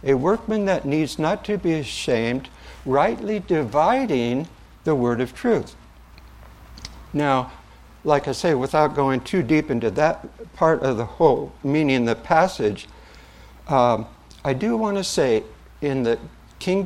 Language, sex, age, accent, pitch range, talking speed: English, male, 60-79, American, 115-155 Hz, 140 wpm